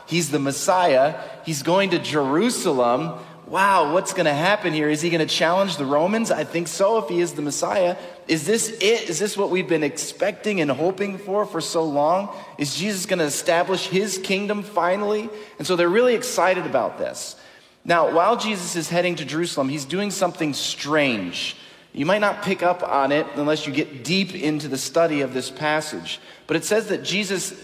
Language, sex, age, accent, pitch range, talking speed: English, male, 30-49, American, 150-190 Hz, 200 wpm